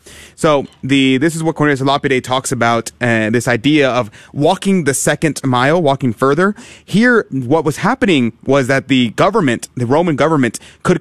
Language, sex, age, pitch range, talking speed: English, male, 30-49, 125-160 Hz, 170 wpm